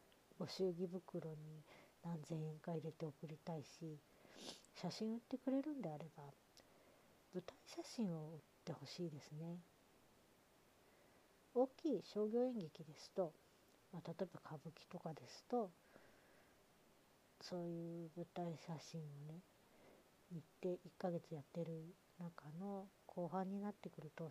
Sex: female